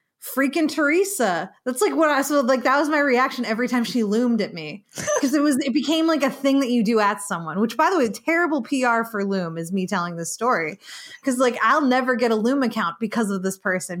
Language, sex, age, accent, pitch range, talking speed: English, female, 20-39, American, 195-270 Hz, 240 wpm